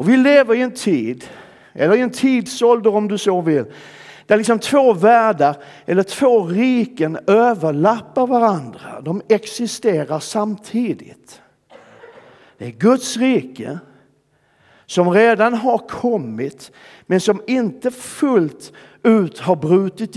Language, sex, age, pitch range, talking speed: Swedish, male, 50-69, 155-225 Hz, 120 wpm